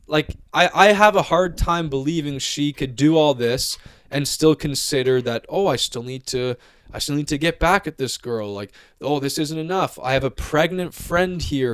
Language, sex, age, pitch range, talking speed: English, male, 20-39, 115-165 Hz, 215 wpm